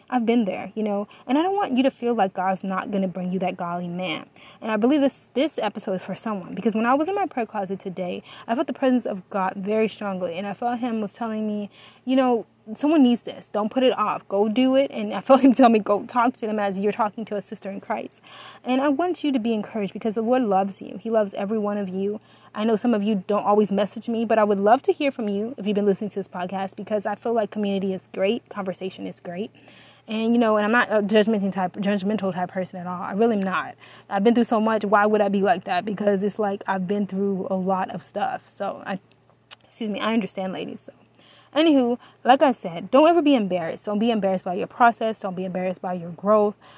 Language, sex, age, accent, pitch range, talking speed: English, female, 20-39, American, 195-235 Hz, 260 wpm